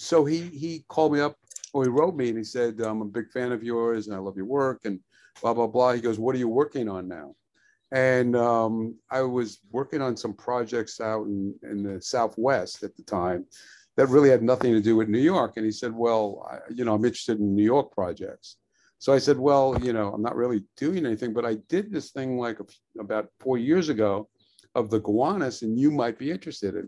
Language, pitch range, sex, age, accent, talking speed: English, 110-130 Hz, male, 50-69, American, 235 wpm